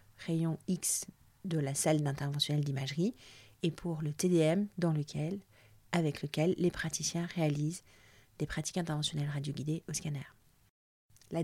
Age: 40-59